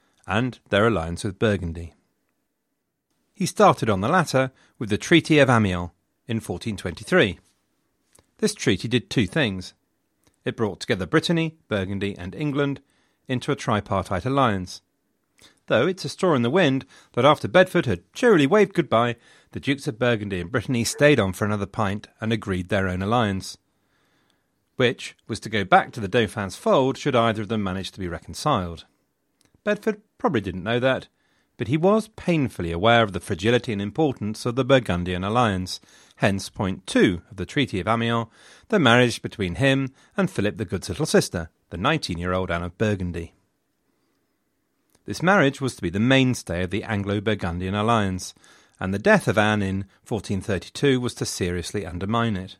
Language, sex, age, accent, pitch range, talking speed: English, male, 40-59, British, 95-130 Hz, 165 wpm